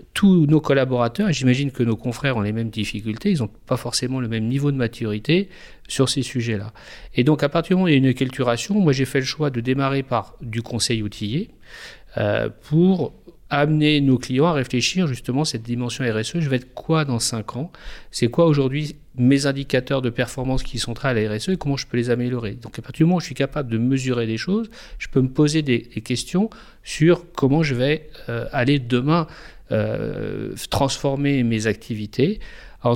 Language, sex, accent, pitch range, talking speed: French, male, French, 115-150 Hz, 210 wpm